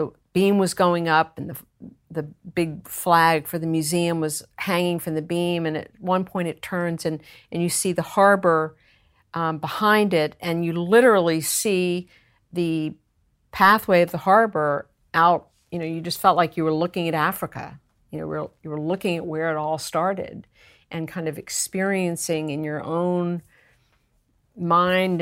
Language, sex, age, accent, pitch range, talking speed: English, female, 50-69, American, 155-180 Hz, 175 wpm